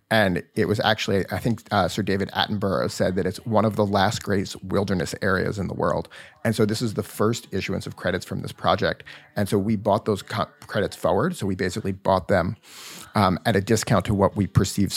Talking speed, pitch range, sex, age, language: 220 wpm, 100-115 Hz, male, 30-49, English